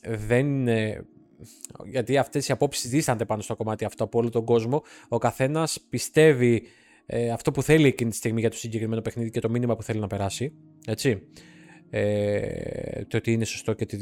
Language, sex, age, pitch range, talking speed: Greek, male, 20-39, 120-185 Hz, 165 wpm